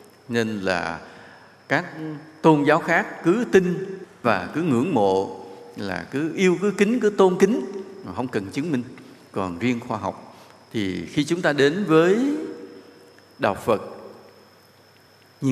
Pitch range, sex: 100-170 Hz, male